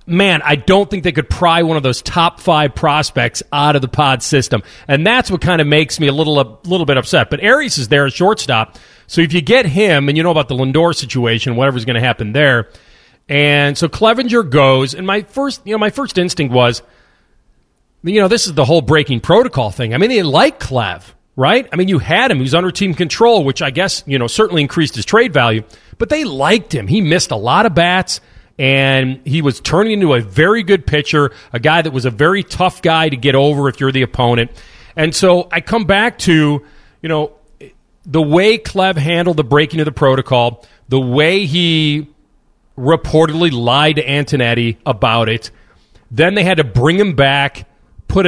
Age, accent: 40-59, American